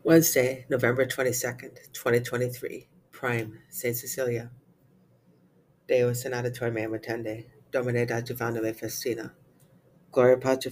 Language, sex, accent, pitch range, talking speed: English, female, American, 110-125 Hz, 95 wpm